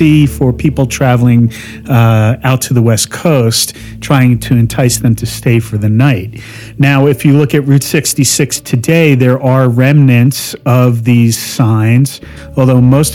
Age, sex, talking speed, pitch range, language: 40-59, male, 155 wpm, 115-140 Hz, English